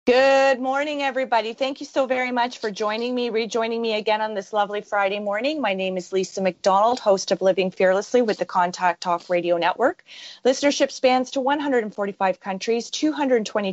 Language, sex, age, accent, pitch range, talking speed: English, female, 30-49, American, 185-230 Hz, 175 wpm